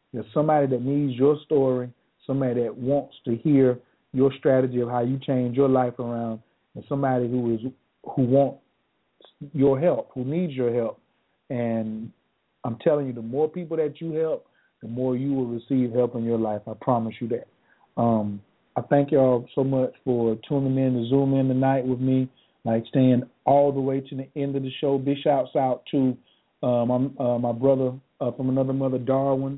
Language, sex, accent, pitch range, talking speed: English, male, American, 125-140 Hz, 195 wpm